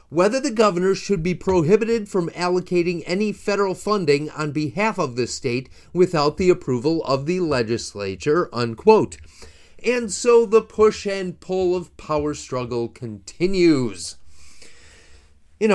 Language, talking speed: English, 130 wpm